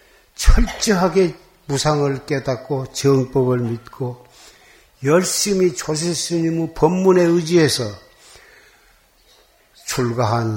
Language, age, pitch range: Korean, 60-79, 125-165 Hz